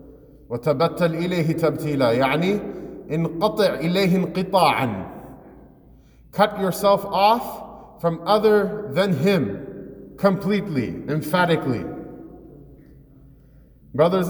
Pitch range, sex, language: 145-190 Hz, male, English